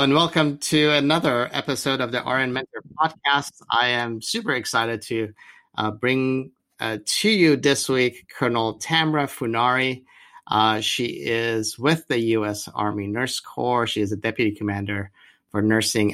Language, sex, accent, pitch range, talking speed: English, male, American, 105-130 Hz, 150 wpm